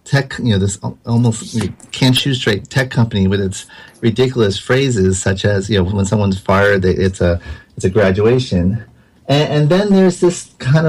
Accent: American